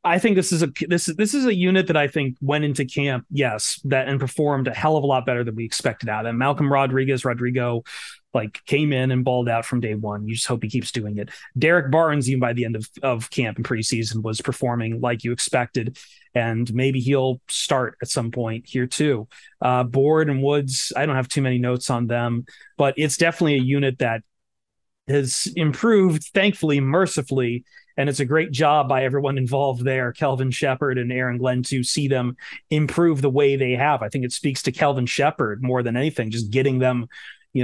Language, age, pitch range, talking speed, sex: English, 30-49, 120-140 Hz, 215 wpm, male